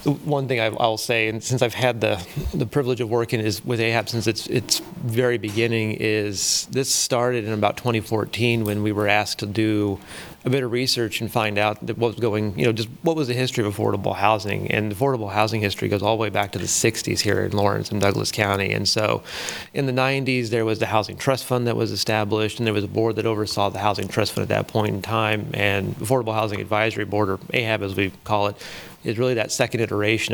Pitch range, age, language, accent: 100-120 Hz, 30-49, English, American